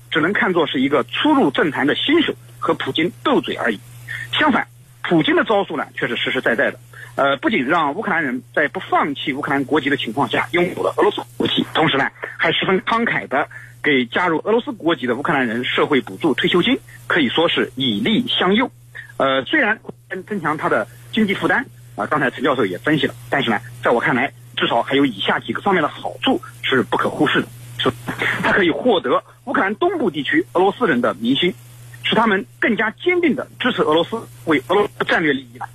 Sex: male